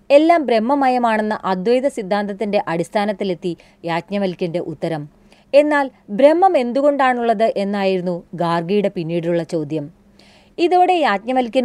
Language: Malayalam